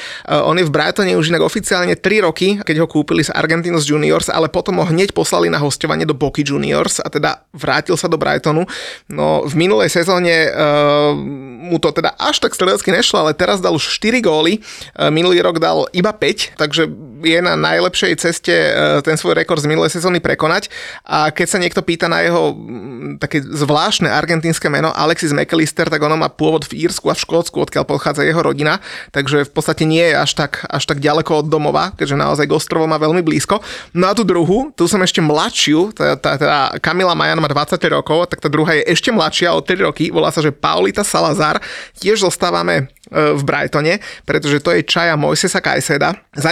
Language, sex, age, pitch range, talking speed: Slovak, male, 30-49, 150-180 Hz, 190 wpm